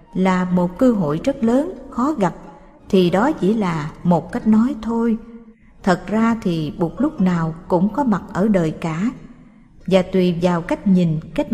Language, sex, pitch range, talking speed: Vietnamese, female, 180-235 Hz, 175 wpm